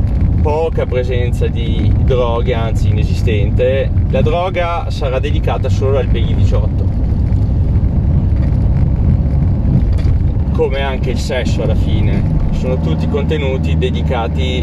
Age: 30-49